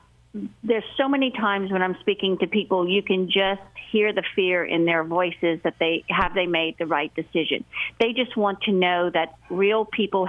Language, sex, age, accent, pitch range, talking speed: English, female, 50-69, American, 175-215 Hz, 200 wpm